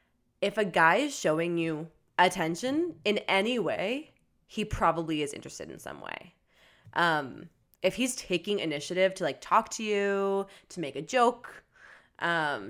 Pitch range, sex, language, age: 160-200 Hz, female, English, 20-39